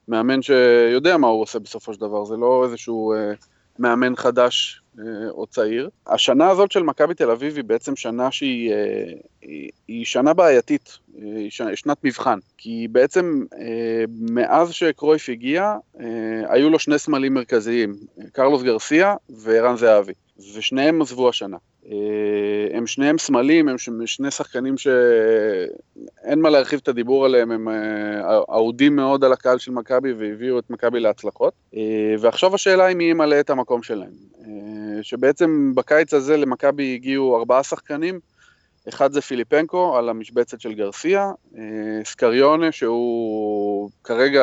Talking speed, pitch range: 130 wpm, 115-155 Hz